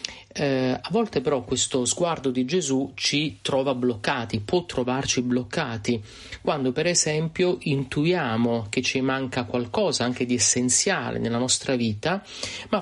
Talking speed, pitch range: 135 wpm, 125-155 Hz